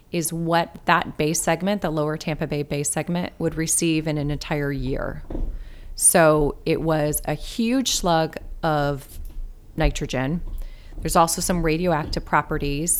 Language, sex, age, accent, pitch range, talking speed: English, female, 30-49, American, 145-170 Hz, 140 wpm